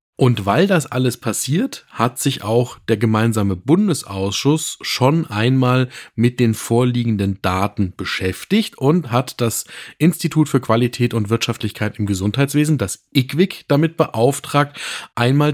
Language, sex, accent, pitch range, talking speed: German, male, German, 105-140 Hz, 125 wpm